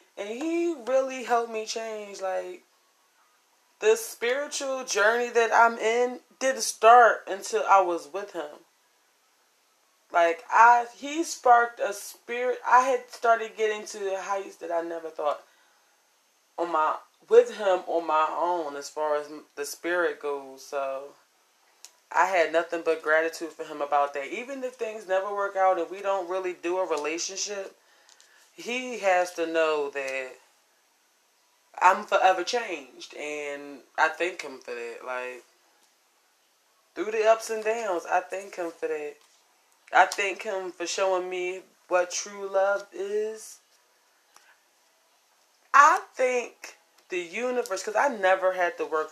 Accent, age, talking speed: American, 20-39, 145 wpm